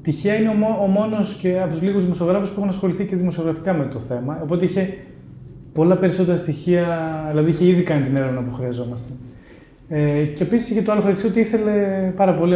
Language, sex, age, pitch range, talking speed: Greek, male, 20-39, 140-185 Hz, 190 wpm